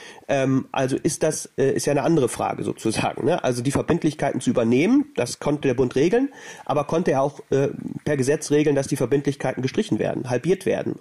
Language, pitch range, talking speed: German, 135-175 Hz, 180 wpm